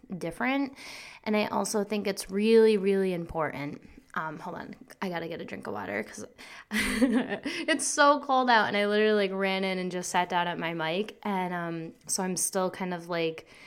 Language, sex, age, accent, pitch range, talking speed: English, female, 20-39, American, 165-225 Hz, 200 wpm